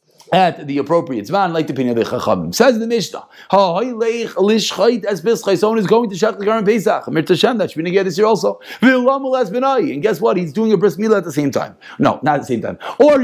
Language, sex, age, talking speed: English, male, 30-49, 215 wpm